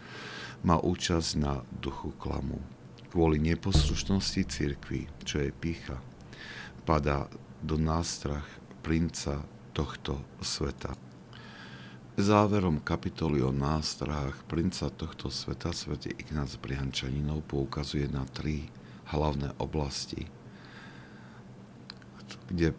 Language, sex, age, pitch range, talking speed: Slovak, male, 50-69, 65-80 Hz, 85 wpm